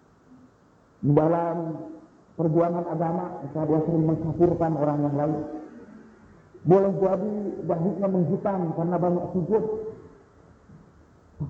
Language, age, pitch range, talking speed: Indonesian, 50-69, 160-215 Hz, 90 wpm